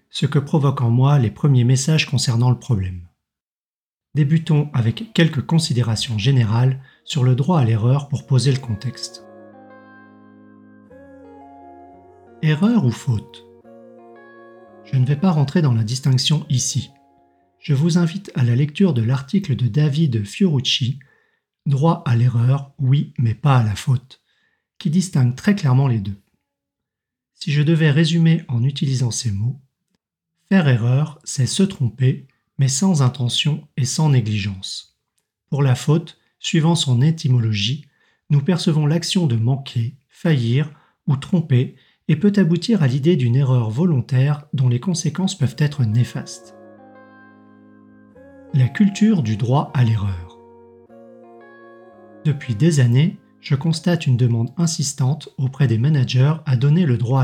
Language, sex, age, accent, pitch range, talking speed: French, male, 40-59, French, 120-165 Hz, 135 wpm